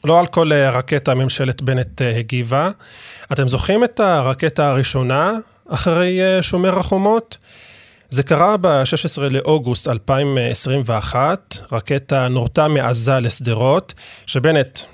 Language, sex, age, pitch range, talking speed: Hebrew, male, 30-49, 120-160 Hz, 100 wpm